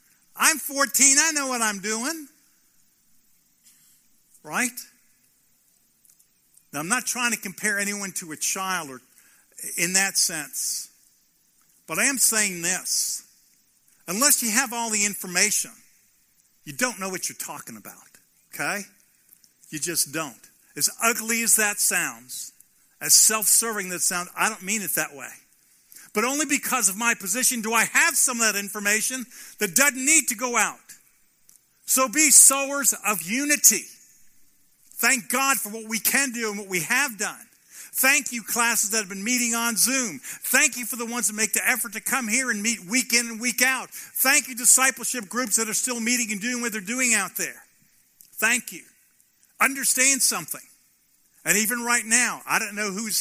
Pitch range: 205-250 Hz